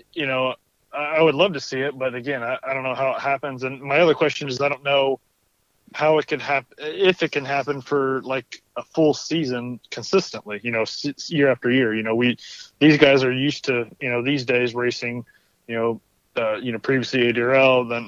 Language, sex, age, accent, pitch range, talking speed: English, male, 30-49, American, 125-150 Hz, 215 wpm